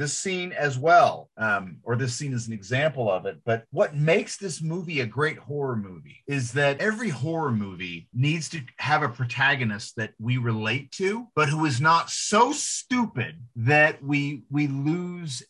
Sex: male